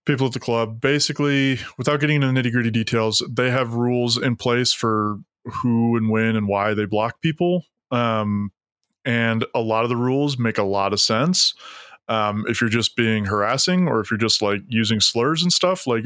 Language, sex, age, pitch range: English, male, 20-39, 110-130 Hz